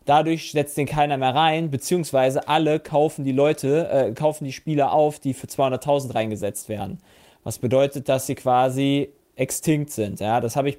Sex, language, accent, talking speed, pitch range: male, German, German, 180 wpm, 135-170 Hz